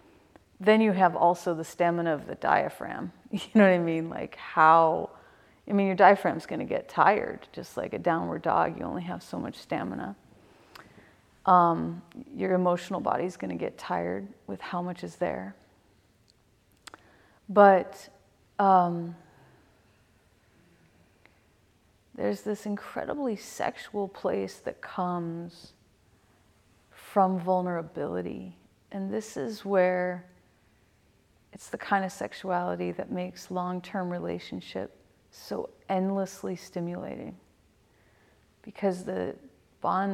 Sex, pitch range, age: female, 160-190 Hz, 30-49